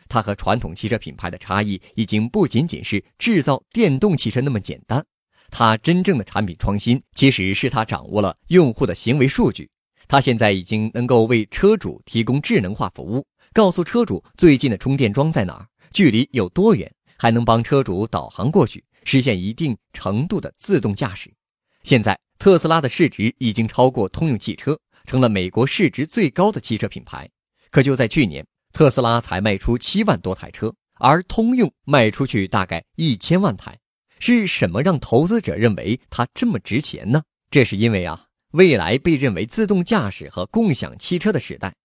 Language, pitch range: Chinese, 105-155 Hz